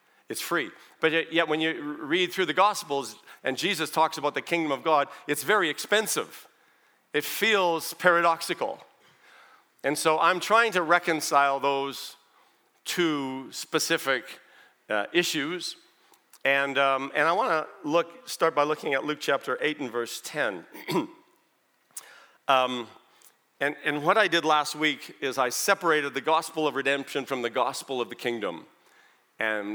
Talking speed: 150 wpm